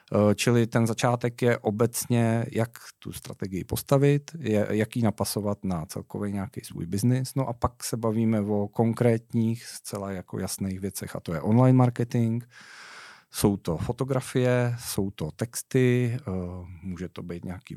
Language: Czech